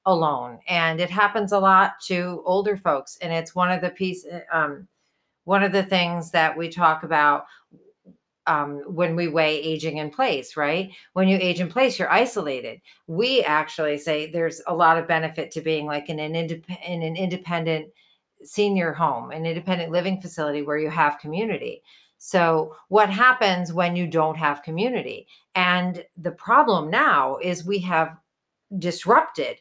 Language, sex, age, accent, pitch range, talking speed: English, female, 40-59, American, 165-205 Hz, 165 wpm